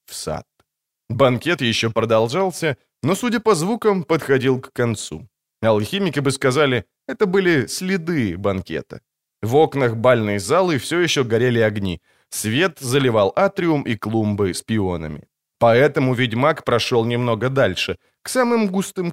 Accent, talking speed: native, 130 wpm